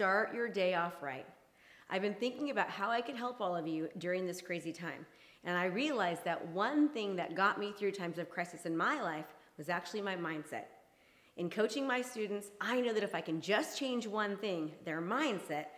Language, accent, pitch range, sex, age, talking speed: English, American, 175-230 Hz, female, 30-49, 215 wpm